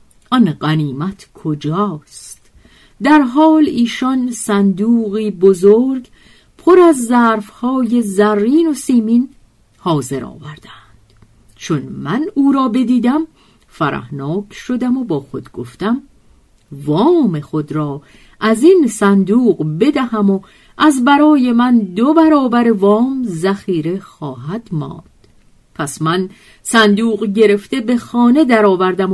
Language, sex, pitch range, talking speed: Persian, female, 155-245 Hz, 105 wpm